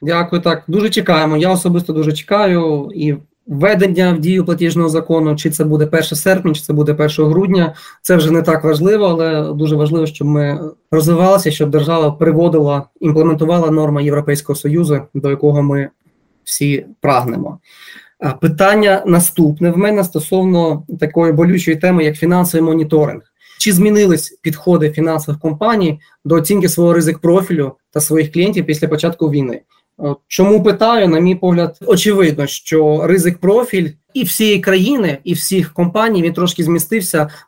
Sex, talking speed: male, 145 wpm